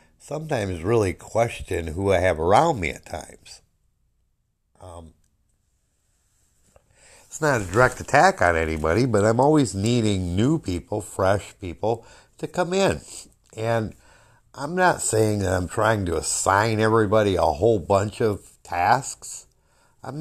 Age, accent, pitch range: 60-79, American, 90-110 Hz